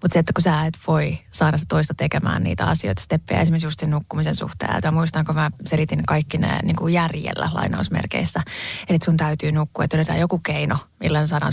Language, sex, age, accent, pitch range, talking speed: Finnish, female, 20-39, native, 155-175 Hz, 205 wpm